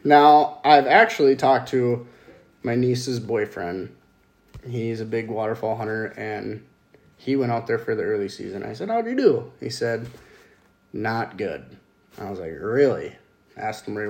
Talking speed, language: 165 wpm, English